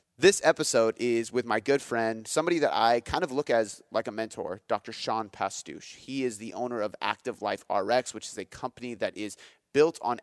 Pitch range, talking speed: 105-135 Hz, 210 wpm